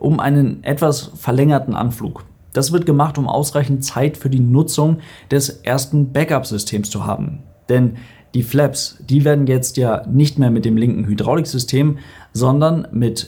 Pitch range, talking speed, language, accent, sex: 120-145 Hz, 155 wpm, German, German, male